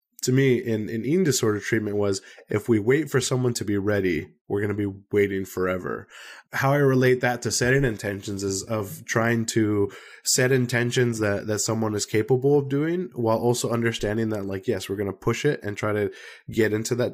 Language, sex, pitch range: English, male, 100-120 Hz